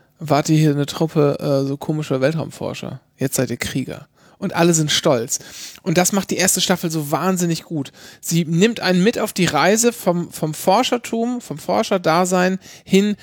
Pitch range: 145-180 Hz